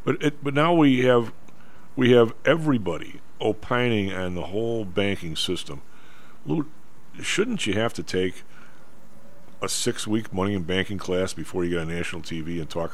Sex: male